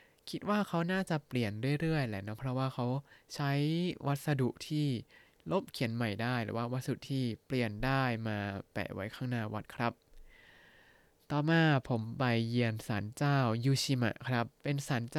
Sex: male